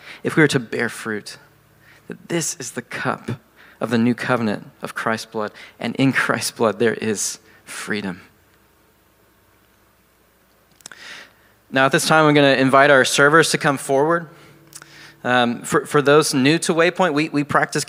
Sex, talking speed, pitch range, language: male, 160 wpm, 120-150 Hz, English